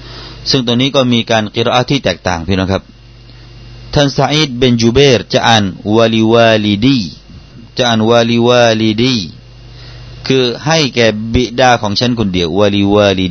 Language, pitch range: Thai, 100-125 Hz